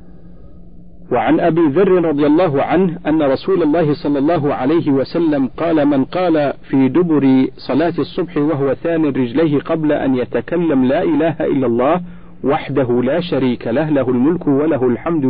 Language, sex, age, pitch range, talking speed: Arabic, male, 50-69, 130-165 Hz, 150 wpm